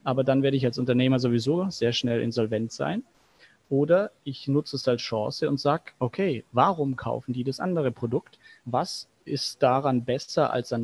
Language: German